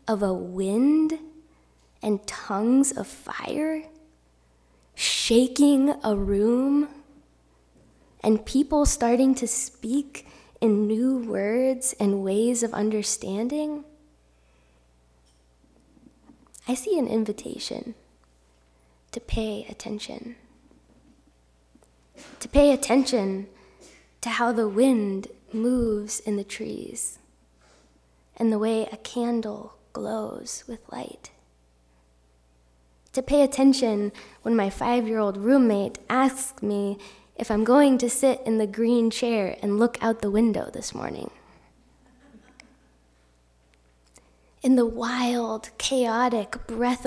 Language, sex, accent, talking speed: English, female, American, 100 wpm